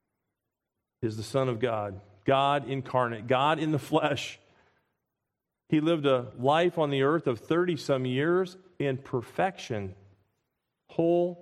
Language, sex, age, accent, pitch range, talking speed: English, male, 40-59, American, 110-150 Hz, 130 wpm